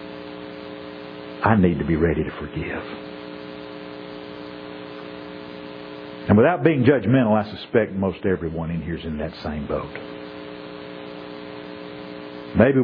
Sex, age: male, 50-69